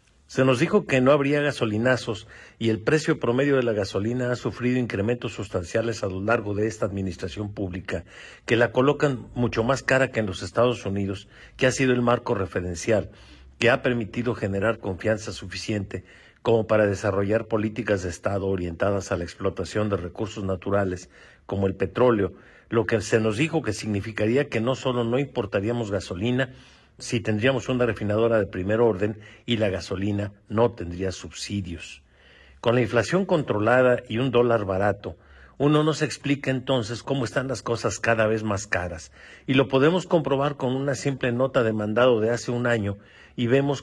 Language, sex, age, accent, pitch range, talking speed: Spanish, male, 50-69, Mexican, 100-125 Hz, 175 wpm